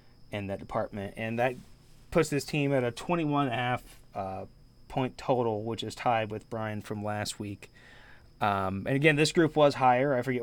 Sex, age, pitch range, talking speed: male, 20-39, 115-140 Hz, 185 wpm